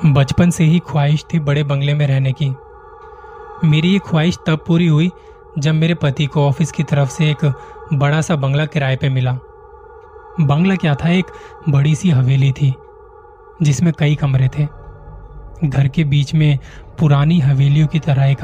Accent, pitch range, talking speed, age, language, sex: native, 140-175 Hz, 170 wpm, 20-39, Hindi, male